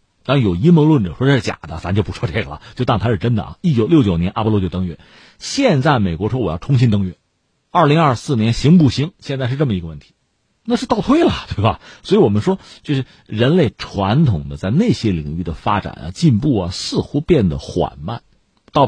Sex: male